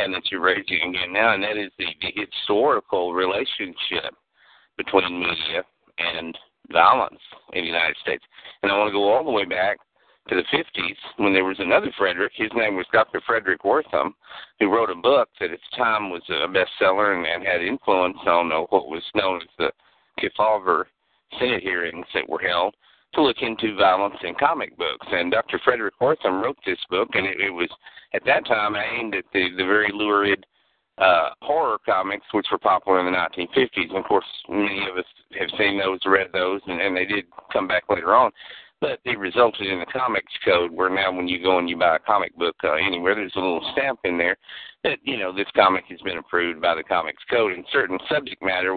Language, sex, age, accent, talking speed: English, male, 50-69, American, 205 wpm